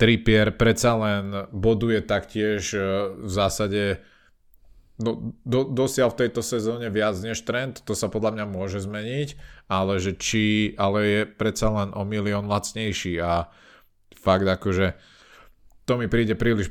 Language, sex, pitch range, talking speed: Slovak, male, 95-110 Hz, 140 wpm